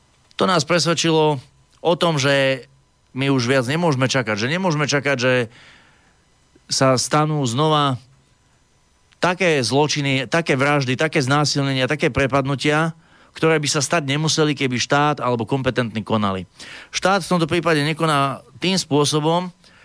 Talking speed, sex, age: 130 wpm, male, 30-49